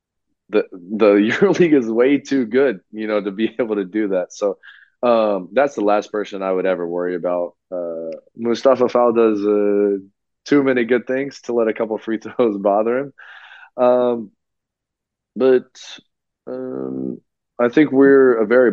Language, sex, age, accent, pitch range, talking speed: Greek, male, 20-39, American, 90-115 Hz, 165 wpm